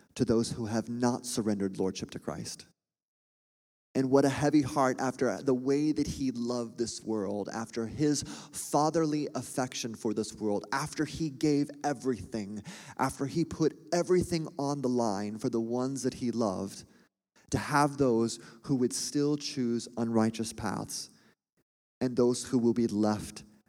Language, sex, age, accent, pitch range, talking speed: English, male, 30-49, American, 115-140 Hz, 155 wpm